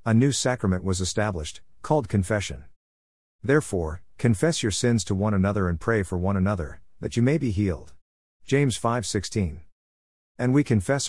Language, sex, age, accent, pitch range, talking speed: English, male, 50-69, American, 90-115 Hz, 155 wpm